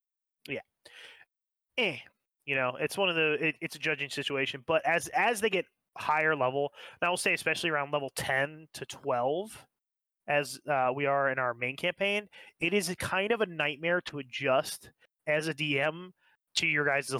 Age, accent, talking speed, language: 30-49, American, 180 wpm, English